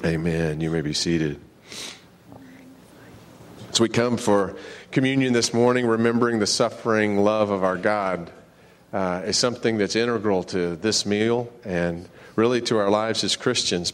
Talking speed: 145 wpm